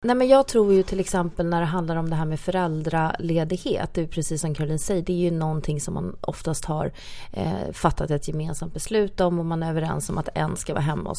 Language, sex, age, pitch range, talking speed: Swedish, female, 30-49, 160-195 Hz, 245 wpm